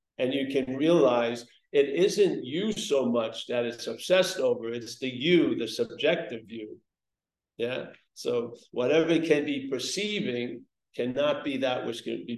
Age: 50-69